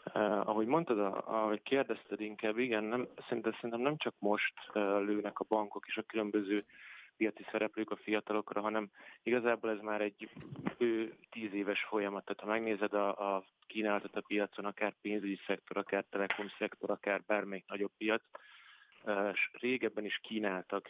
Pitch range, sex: 100-110 Hz, male